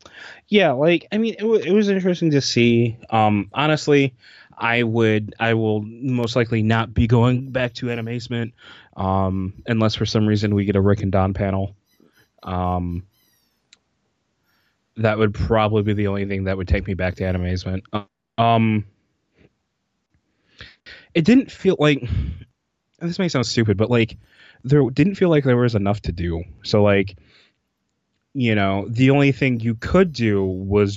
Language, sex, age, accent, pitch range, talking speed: English, male, 20-39, American, 95-120 Hz, 165 wpm